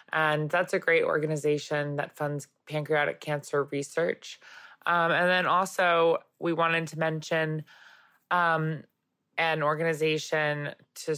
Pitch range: 145-170 Hz